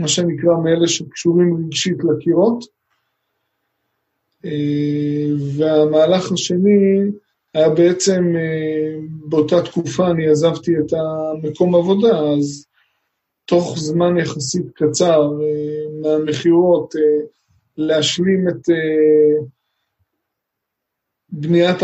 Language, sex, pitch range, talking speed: Hebrew, male, 150-175 Hz, 70 wpm